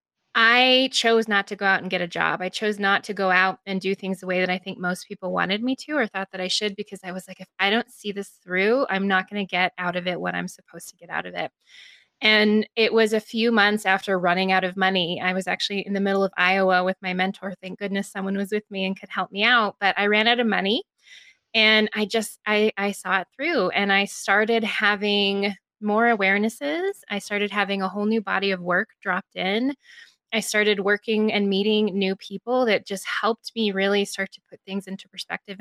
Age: 20-39